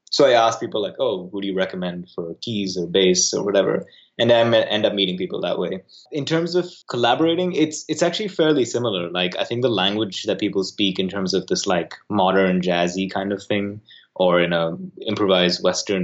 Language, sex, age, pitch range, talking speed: English, male, 20-39, 90-125 Hz, 215 wpm